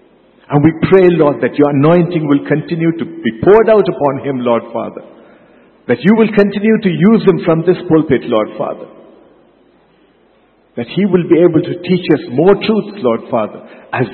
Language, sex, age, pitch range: English, male, 50-69, 120-160 Hz